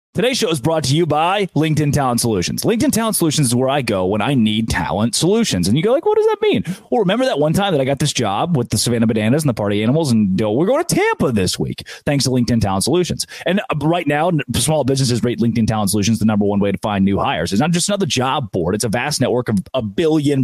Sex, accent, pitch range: male, American, 110-155 Hz